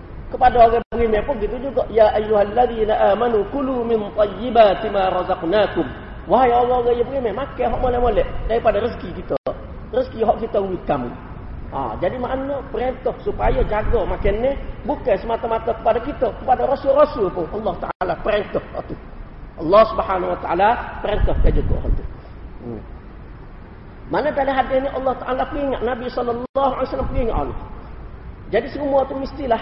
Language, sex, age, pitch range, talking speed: Malay, male, 40-59, 215-255 Hz, 145 wpm